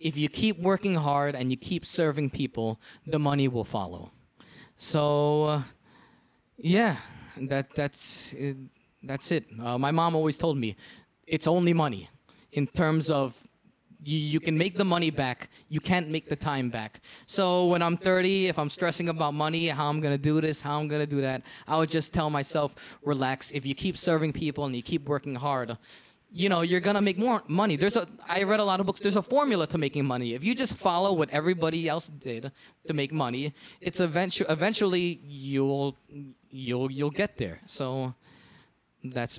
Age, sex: 20-39, male